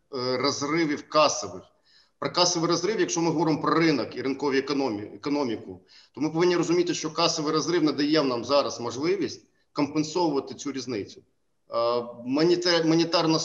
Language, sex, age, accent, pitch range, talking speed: Ukrainian, male, 40-59, native, 140-170 Hz, 125 wpm